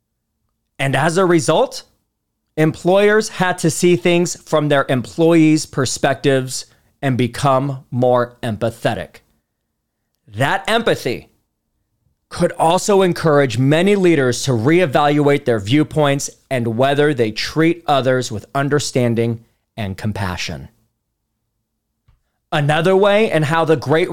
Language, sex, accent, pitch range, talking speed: English, male, American, 115-165 Hz, 105 wpm